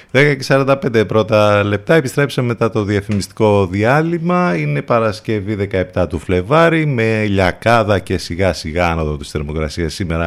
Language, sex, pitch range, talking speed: Greek, male, 90-125 Hz, 135 wpm